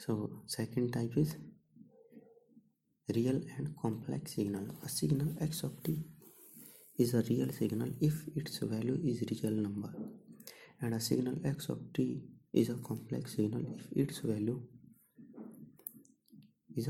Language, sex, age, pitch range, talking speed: English, male, 30-49, 115-155 Hz, 130 wpm